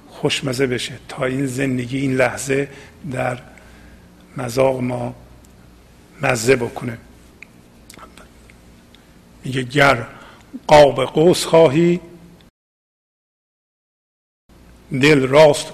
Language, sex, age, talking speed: Persian, male, 50-69, 70 wpm